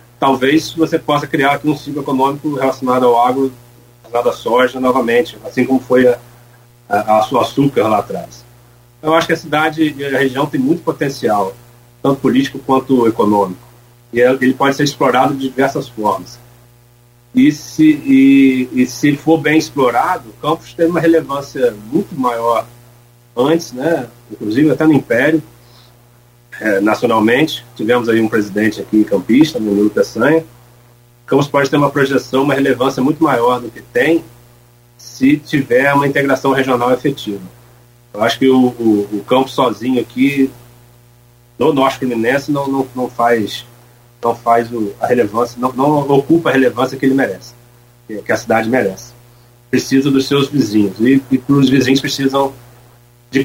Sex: male